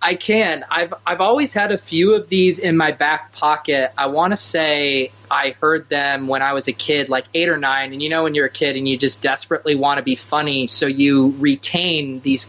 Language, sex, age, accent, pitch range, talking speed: English, male, 20-39, American, 130-165 Hz, 235 wpm